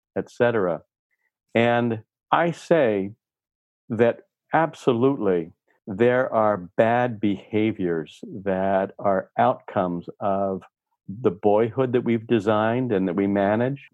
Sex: male